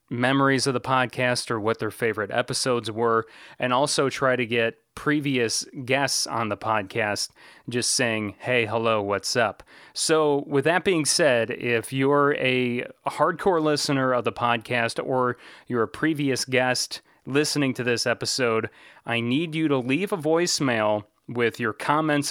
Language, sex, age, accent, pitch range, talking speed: English, male, 30-49, American, 115-145 Hz, 155 wpm